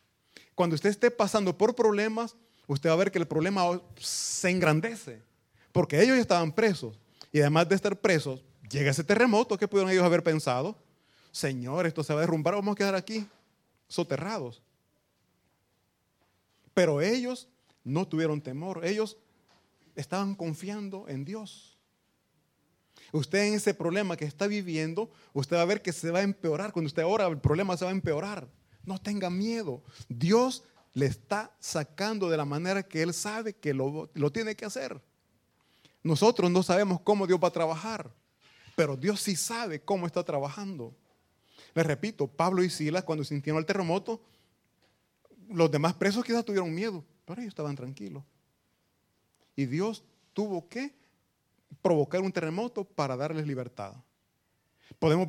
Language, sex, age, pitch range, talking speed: Italian, male, 30-49, 150-205 Hz, 155 wpm